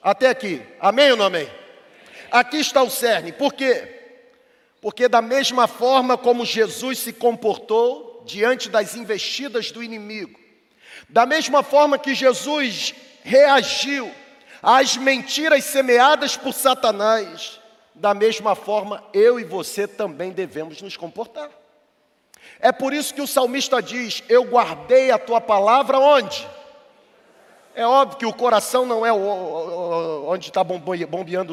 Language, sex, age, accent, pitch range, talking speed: Portuguese, male, 40-59, Brazilian, 230-275 Hz, 130 wpm